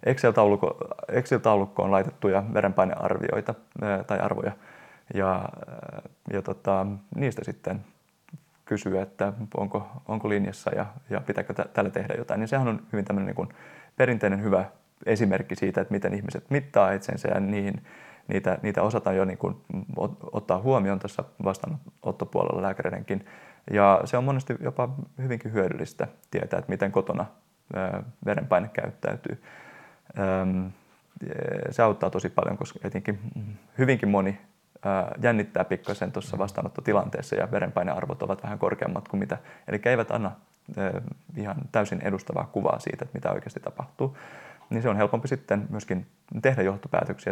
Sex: male